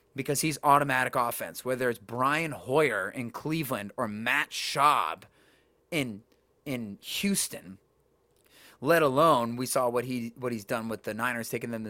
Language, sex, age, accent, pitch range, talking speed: English, male, 30-49, American, 115-155 Hz, 155 wpm